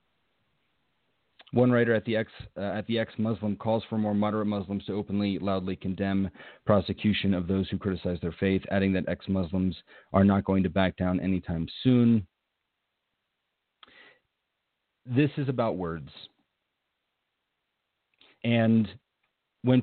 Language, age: English, 40-59